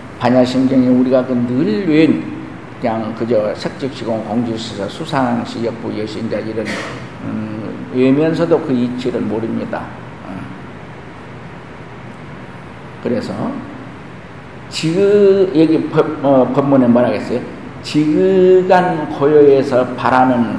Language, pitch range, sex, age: Korean, 125-170 Hz, male, 50-69